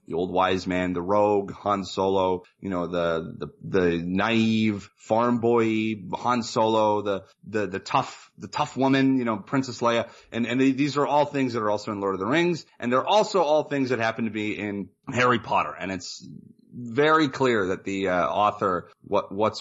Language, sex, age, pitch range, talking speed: English, male, 30-49, 105-135 Hz, 200 wpm